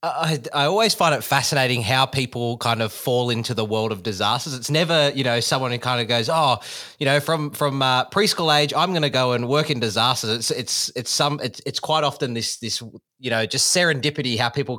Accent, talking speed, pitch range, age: Australian, 230 wpm, 115-145 Hz, 20-39